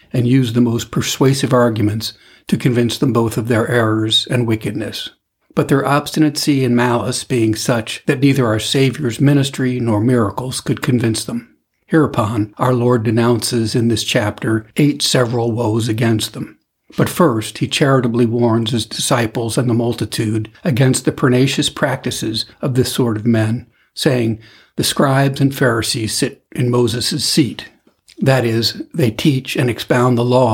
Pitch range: 115-130 Hz